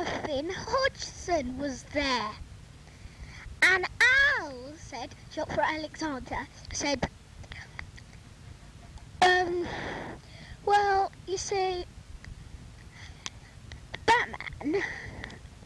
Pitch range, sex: 310-410 Hz, female